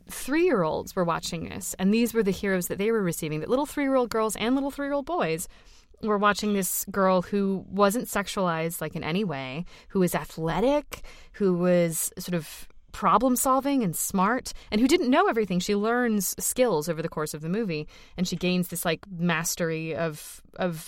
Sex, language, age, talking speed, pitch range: female, English, 20-39, 185 wpm, 170-200 Hz